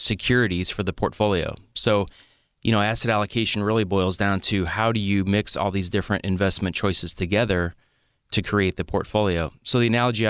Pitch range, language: 100-115 Hz, English